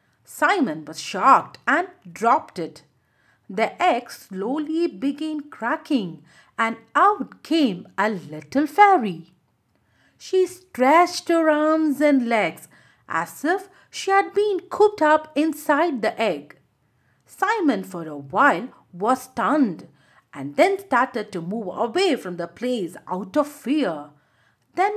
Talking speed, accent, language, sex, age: 125 wpm, Indian, English, female, 50-69